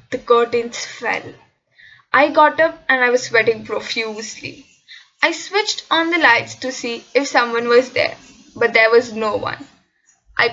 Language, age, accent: English, 10-29, Indian